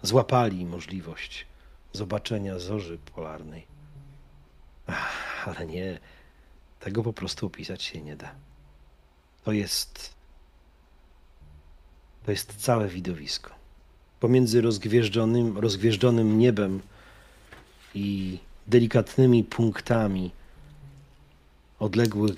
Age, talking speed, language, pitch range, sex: 40-59, 80 wpm, Polish, 75-115 Hz, male